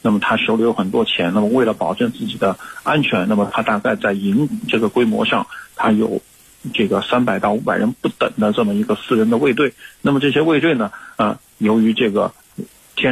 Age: 50-69